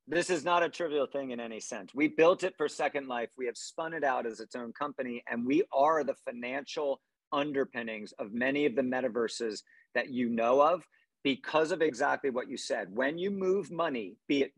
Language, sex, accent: English, male, American